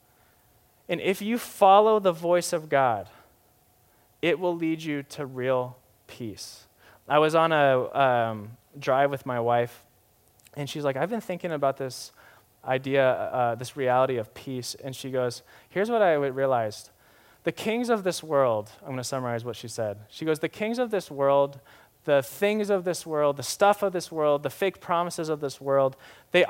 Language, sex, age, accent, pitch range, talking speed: English, male, 20-39, American, 115-160 Hz, 180 wpm